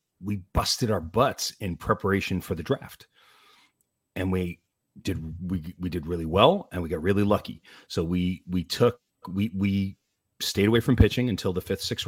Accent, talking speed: American, 180 wpm